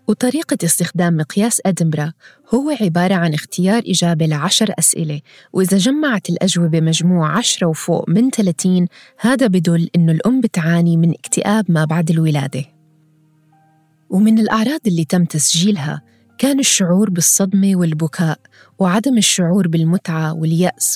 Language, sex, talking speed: Arabic, female, 120 wpm